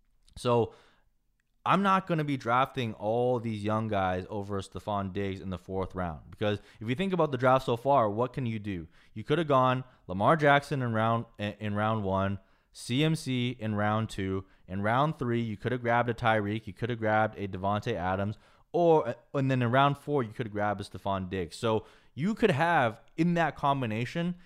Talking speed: 200 wpm